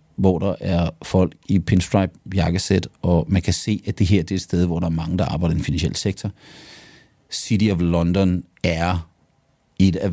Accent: native